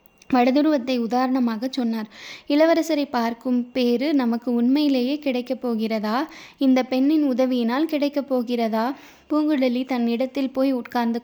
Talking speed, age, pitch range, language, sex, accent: 105 wpm, 20-39, 235-275 Hz, Tamil, female, native